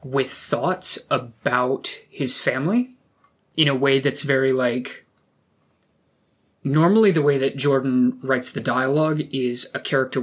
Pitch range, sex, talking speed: 125-145 Hz, male, 130 wpm